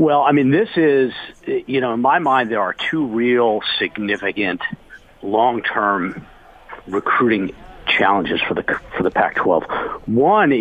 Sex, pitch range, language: male, 125-175 Hz, English